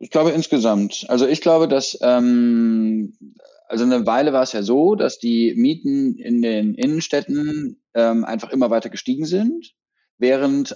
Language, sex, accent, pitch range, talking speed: German, male, German, 115-160 Hz, 155 wpm